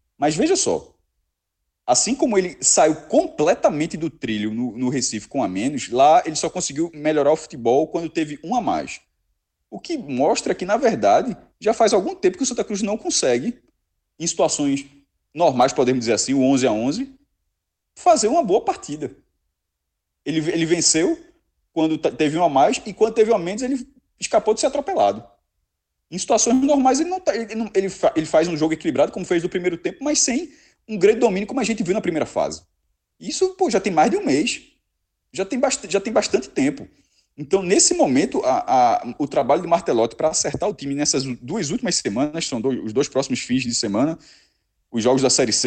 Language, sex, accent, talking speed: Portuguese, male, Brazilian, 200 wpm